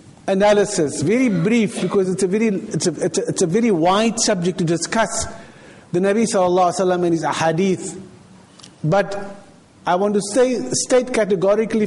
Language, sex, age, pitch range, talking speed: English, male, 50-69, 185-235 Hz, 160 wpm